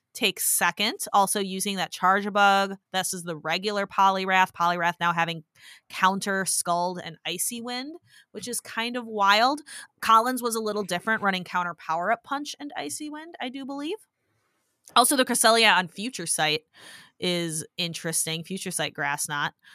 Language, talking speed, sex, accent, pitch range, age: English, 155 wpm, female, American, 175-235 Hz, 20-39